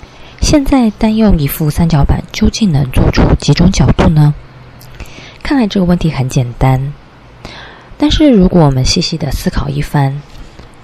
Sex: female